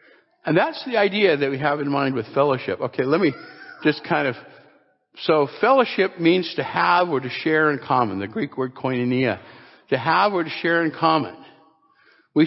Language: English